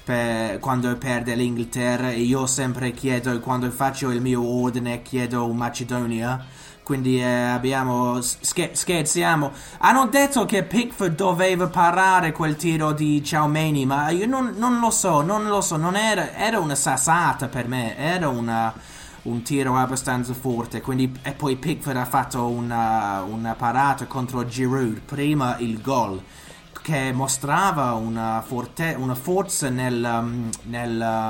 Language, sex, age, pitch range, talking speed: Italian, male, 20-39, 120-155 Hz, 140 wpm